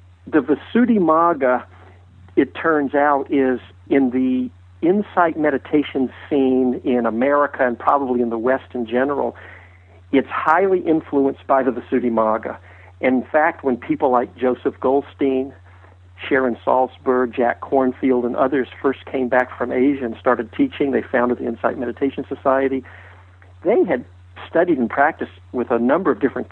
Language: English